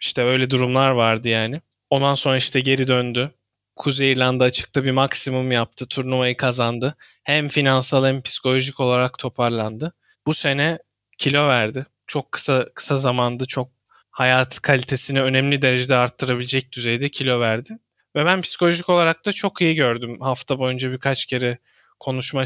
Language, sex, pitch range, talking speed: Turkish, male, 125-140 Hz, 145 wpm